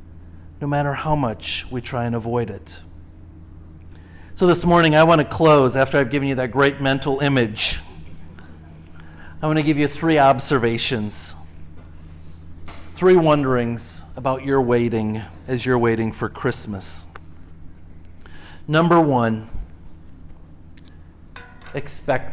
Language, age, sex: English, 40-59, male